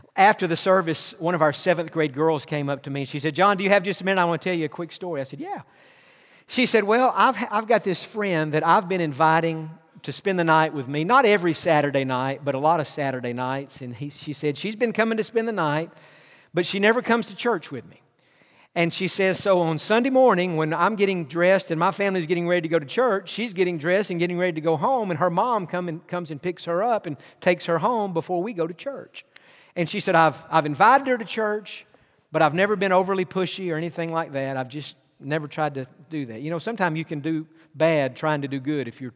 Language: English